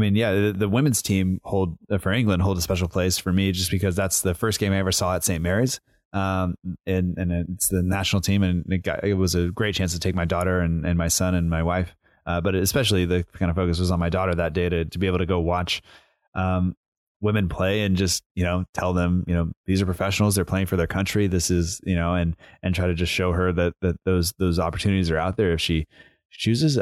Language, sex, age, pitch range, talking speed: English, male, 20-39, 90-100 Hz, 255 wpm